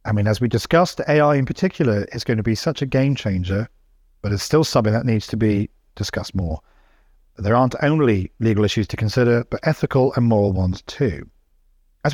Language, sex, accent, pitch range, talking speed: English, male, British, 100-140 Hz, 200 wpm